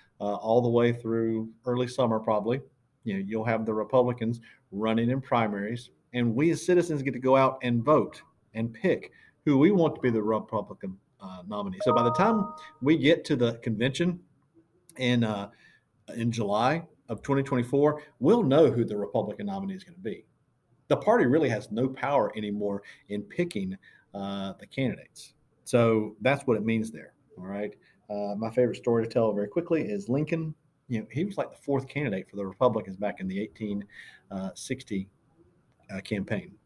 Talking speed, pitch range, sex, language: 180 wpm, 105-140 Hz, male, English